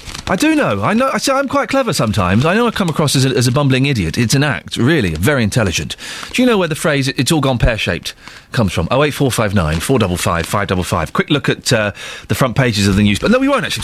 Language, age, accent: English, 30-49, British